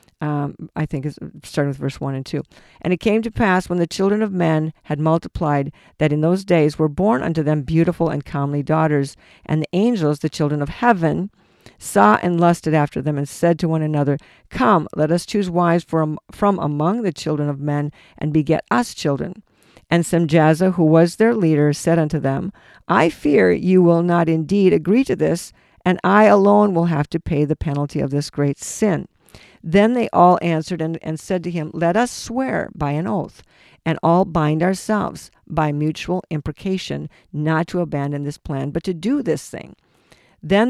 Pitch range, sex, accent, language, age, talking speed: 150-185 Hz, female, American, English, 50-69, 190 wpm